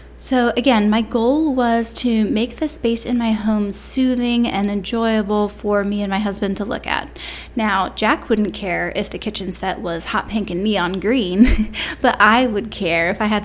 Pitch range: 200-235 Hz